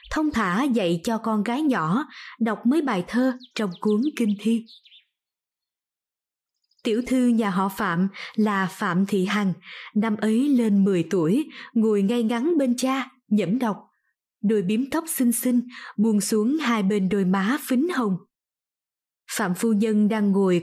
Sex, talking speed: female, 155 wpm